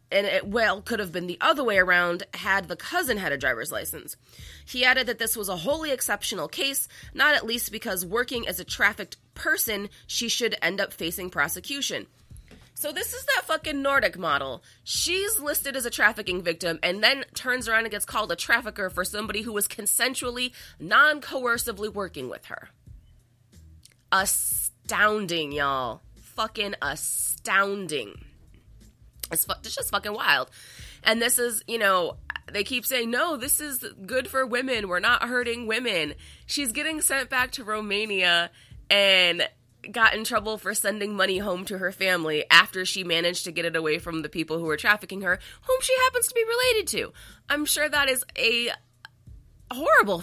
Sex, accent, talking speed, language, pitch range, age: female, American, 170 wpm, English, 175-250 Hz, 20-39